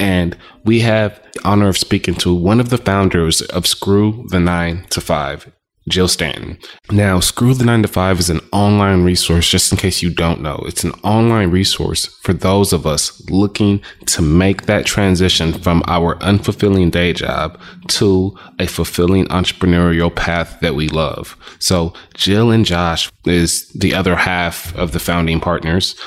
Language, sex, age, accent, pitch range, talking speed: English, male, 20-39, American, 85-95 Hz, 170 wpm